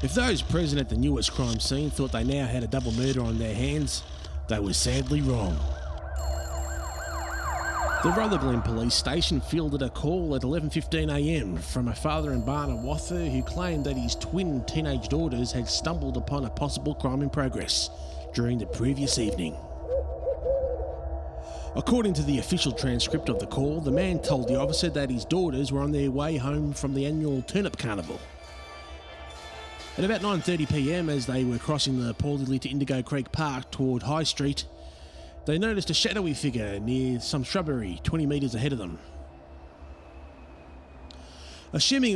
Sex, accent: male, Australian